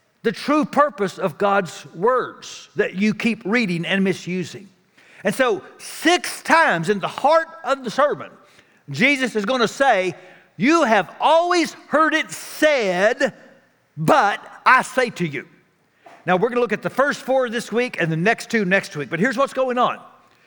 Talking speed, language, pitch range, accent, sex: 175 wpm, English, 170-260 Hz, American, male